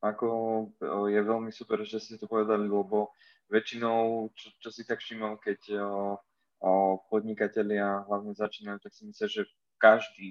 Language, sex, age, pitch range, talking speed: Slovak, male, 20-39, 100-110 Hz, 145 wpm